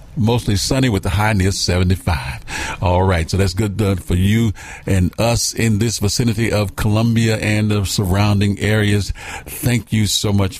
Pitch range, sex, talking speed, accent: 95-115 Hz, male, 165 wpm, American